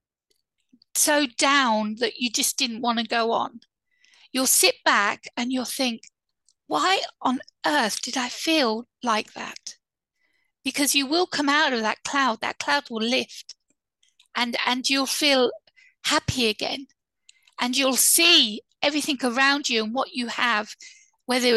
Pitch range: 235-290 Hz